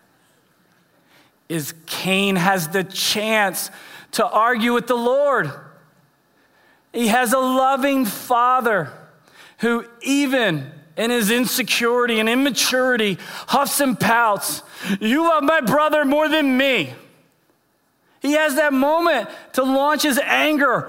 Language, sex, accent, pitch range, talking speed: English, male, American, 230-275 Hz, 115 wpm